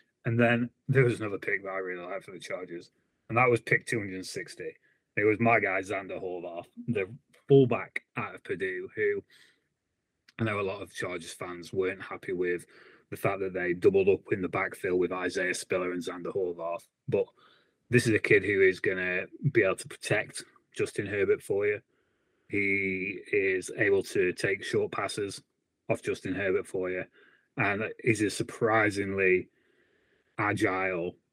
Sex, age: male, 30-49